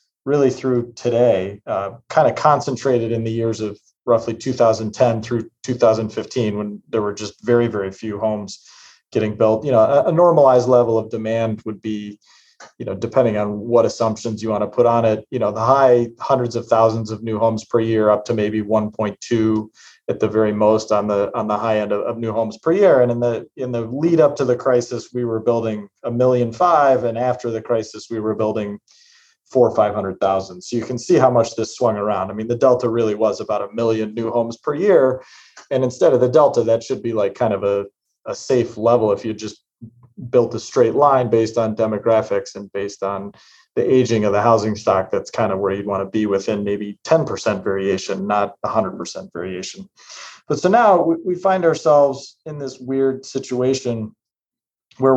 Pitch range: 105-125 Hz